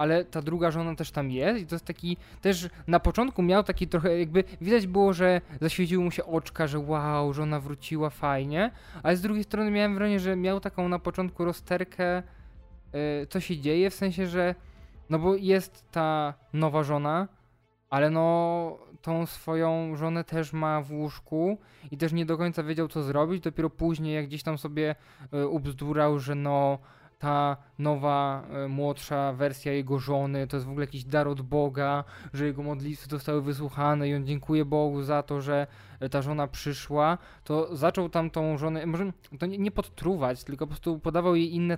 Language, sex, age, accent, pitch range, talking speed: Polish, male, 20-39, native, 145-175 Hz, 180 wpm